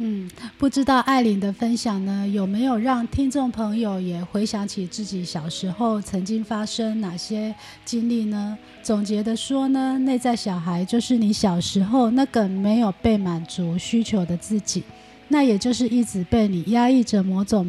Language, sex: Chinese, female